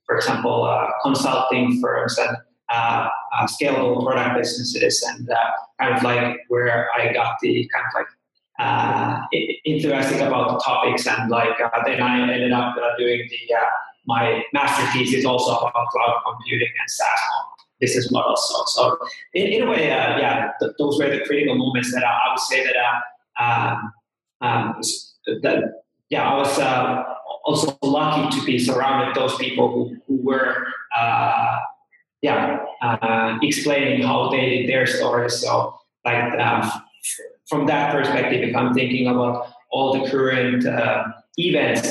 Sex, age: male, 30-49